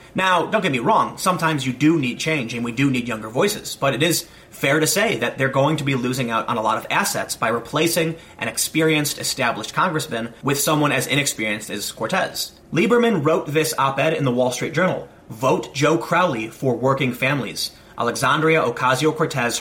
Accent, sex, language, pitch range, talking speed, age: American, male, English, 130-170 Hz, 195 wpm, 30-49